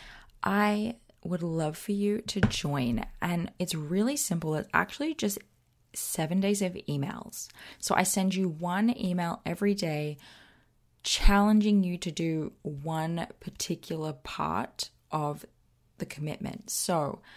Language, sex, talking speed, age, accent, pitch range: English, female, 130 wpm, 20-39, Australian, 155-195 Hz